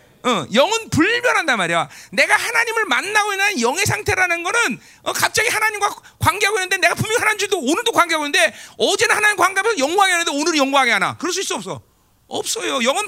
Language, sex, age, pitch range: Korean, male, 40-59, 265-410 Hz